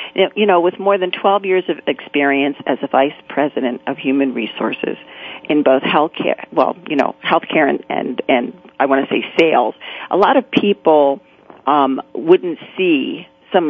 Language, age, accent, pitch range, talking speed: English, 40-59, American, 145-210 Hz, 180 wpm